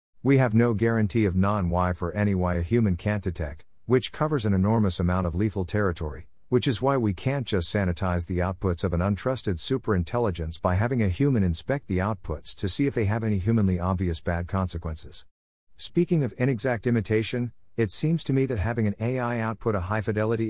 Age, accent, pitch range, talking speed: 50-69, American, 90-115 Hz, 195 wpm